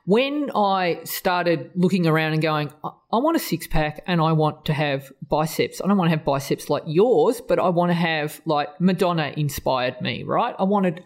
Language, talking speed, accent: English, 205 wpm, Australian